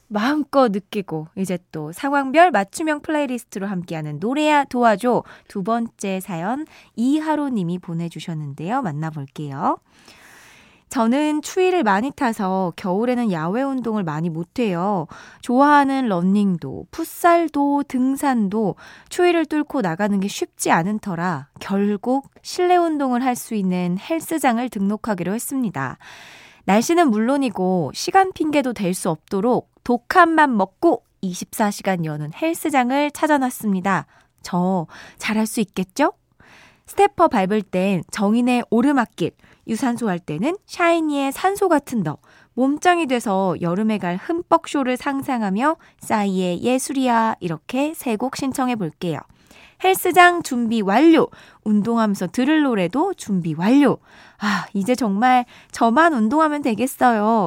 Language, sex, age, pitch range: Korean, female, 20-39, 190-285 Hz